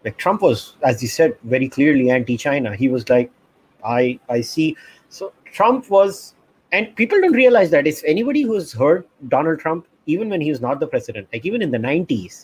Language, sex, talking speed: English, male, 200 wpm